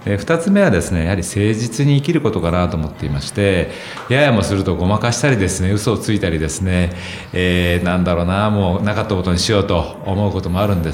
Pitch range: 85-115 Hz